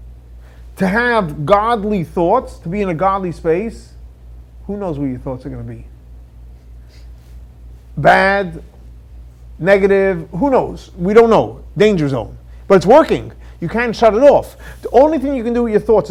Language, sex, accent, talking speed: English, male, American, 170 wpm